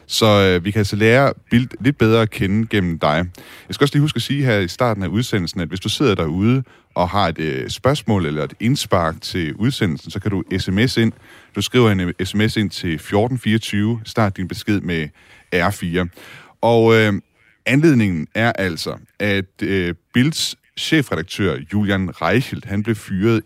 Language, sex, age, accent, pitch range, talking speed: Danish, male, 30-49, native, 90-115 Hz, 170 wpm